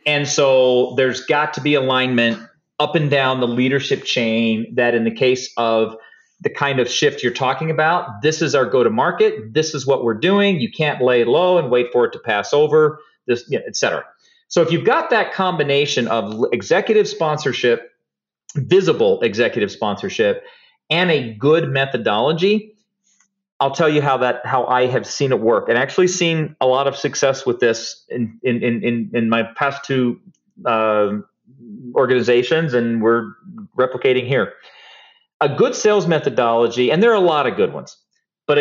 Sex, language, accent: male, English, American